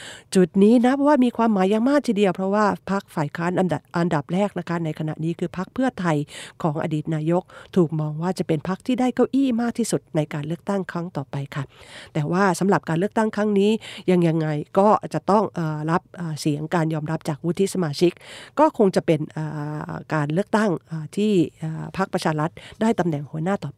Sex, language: female, Japanese